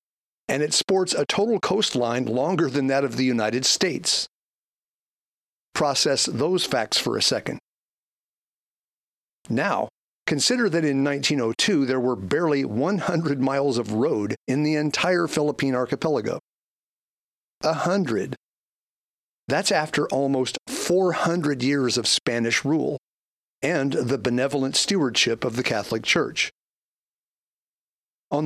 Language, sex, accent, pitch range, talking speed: English, male, American, 125-155 Hz, 115 wpm